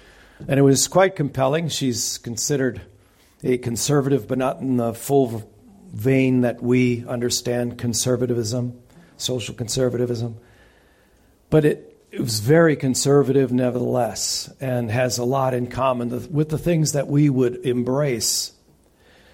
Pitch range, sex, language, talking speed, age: 120-165 Hz, male, English, 125 wpm, 50-69